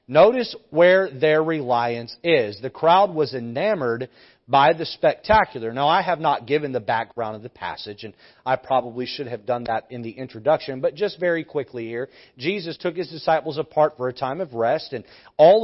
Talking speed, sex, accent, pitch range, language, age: 190 wpm, male, American, 145-195 Hz, English, 40-59